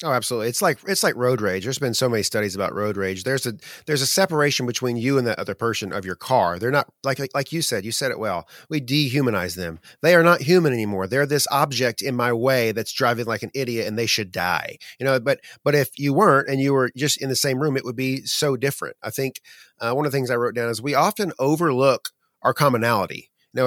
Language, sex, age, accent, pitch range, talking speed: English, male, 30-49, American, 120-155 Hz, 255 wpm